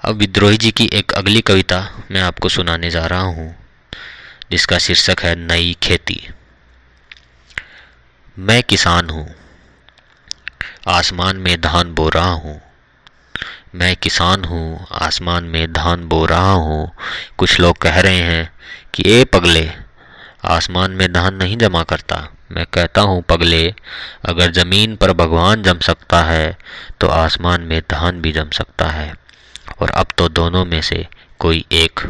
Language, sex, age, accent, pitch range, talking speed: Hindi, male, 20-39, native, 80-95 Hz, 145 wpm